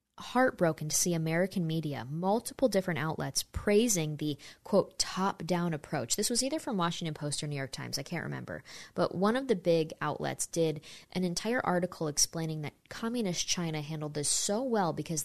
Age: 20-39